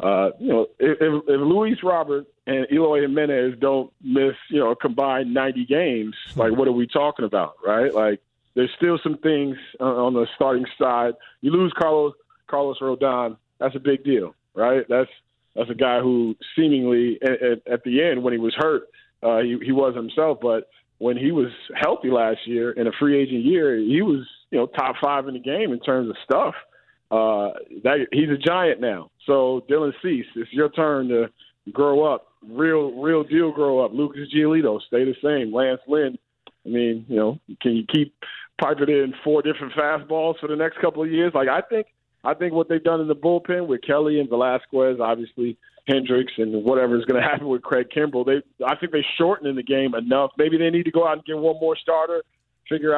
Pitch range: 125-150 Hz